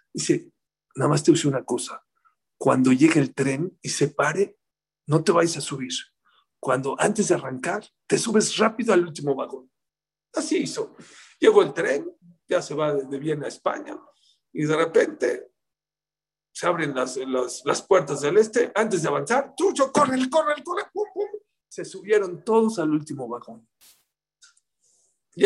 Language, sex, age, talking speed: English, male, 50-69, 160 wpm